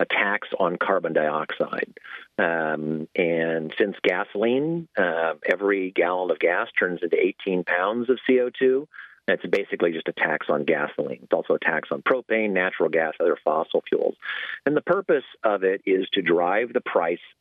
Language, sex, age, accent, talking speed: English, male, 50-69, American, 165 wpm